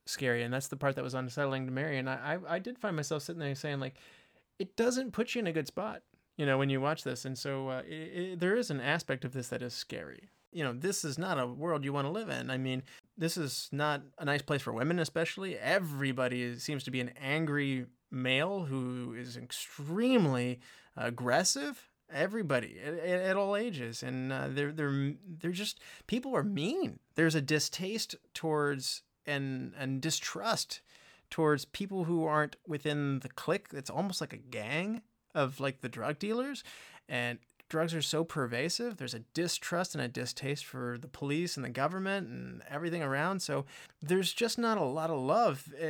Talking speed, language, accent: 195 wpm, English, American